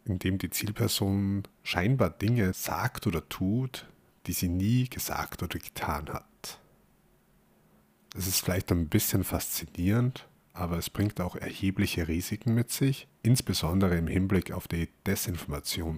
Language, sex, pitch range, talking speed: German, male, 85-105 Hz, 130 wpm